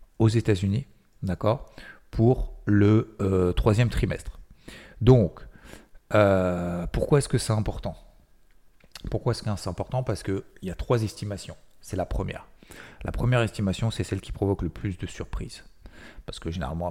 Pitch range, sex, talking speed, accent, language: 90-110 Hz, male, 160 wpm, French, French